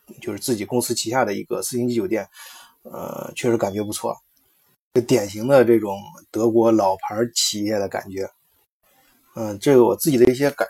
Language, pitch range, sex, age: Chinese, 110-145 Hz, male, 20-39